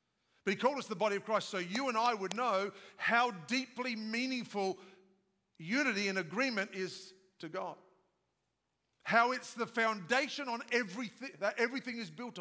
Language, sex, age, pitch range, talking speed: English, male, 50-69, 210-260 Hz, 160 wpm